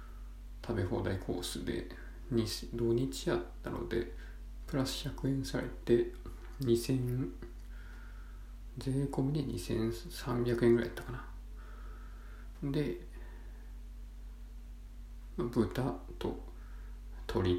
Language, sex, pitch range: Japanese, male, 90-120 Hz